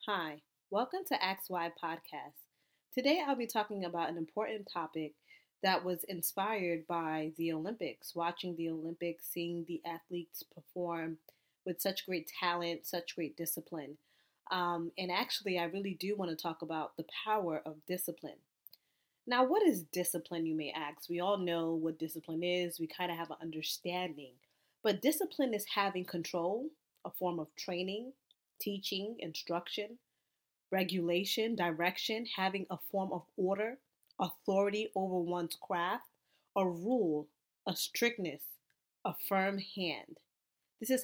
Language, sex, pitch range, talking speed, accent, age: English, female, 165-200 Hz, 140 wpm, American, 20-39